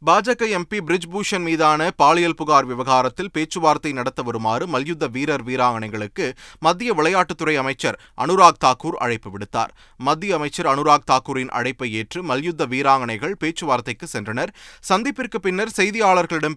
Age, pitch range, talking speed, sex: 30-49, 115-160 Hz, 125 wpm, male